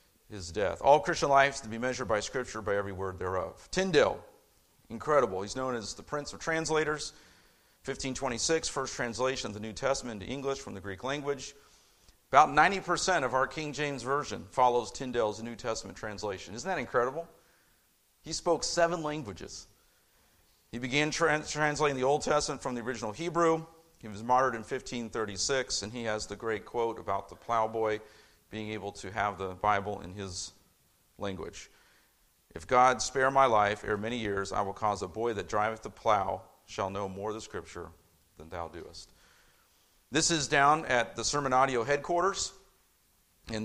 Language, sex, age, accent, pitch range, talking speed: English, male, 40-59, American, 100-135 Hz, 170 wpm